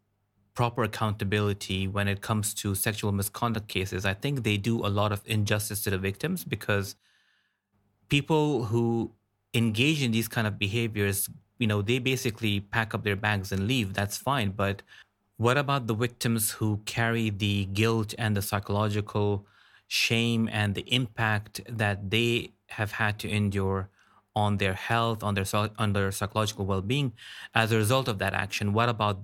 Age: 30-49